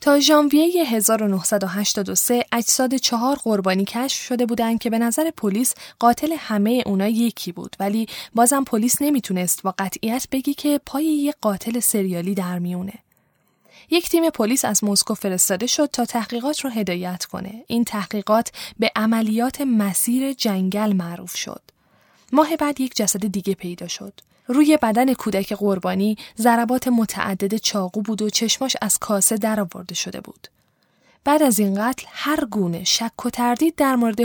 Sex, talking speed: female, 145 wpm